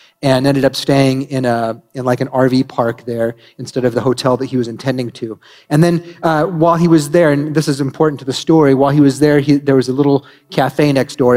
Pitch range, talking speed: 125-155 Hz, 250 wpm